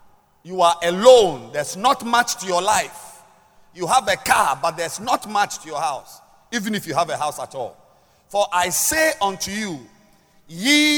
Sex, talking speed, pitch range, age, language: male, 185 wpm, 170-240 Hz, 50-69, English